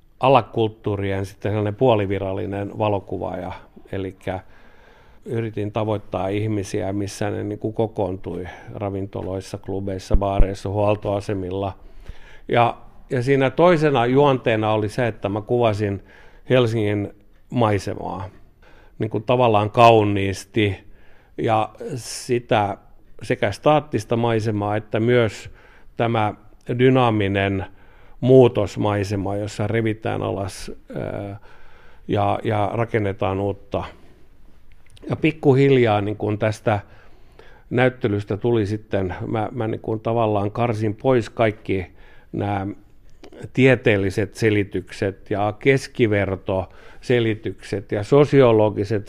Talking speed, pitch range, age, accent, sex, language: 85 wpm, 100-115 Hz, 50-69, native, male, Finnish